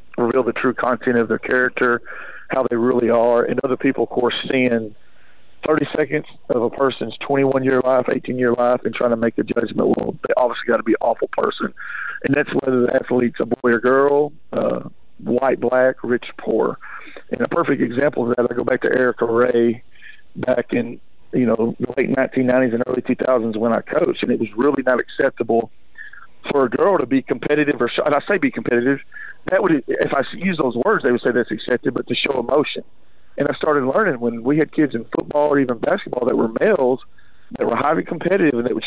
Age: 50-69